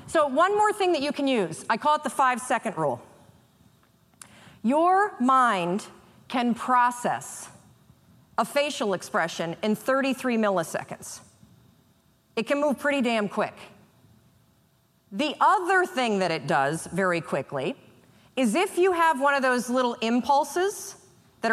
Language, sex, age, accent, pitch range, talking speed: English, female, 40-59, American, 210-295 Hz, 135 wpm